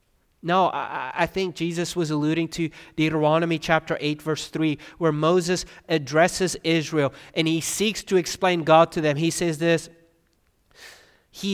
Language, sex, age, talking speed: English, male, 30-49, 145 wpm